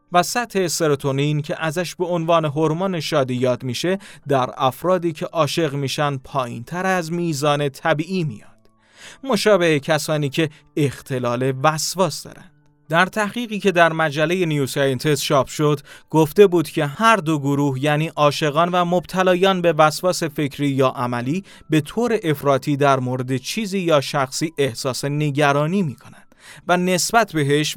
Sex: male